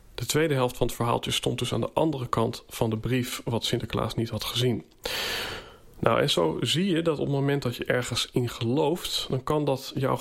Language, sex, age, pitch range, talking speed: Dutch, male, 40-59, 120-155 Hz, 225 wpm